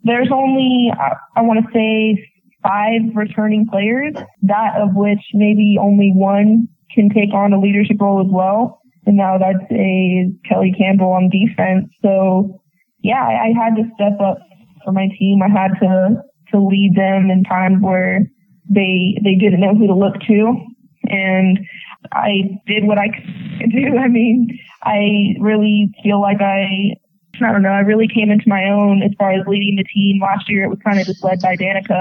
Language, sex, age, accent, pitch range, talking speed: English, female, 20-39, American, 190-210 Hz, 185 wpm